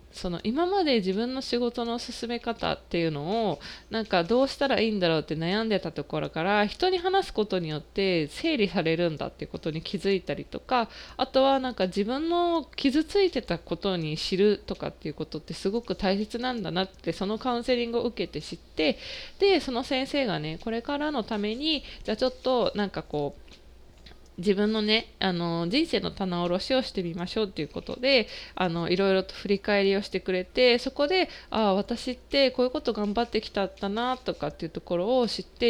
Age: 20-39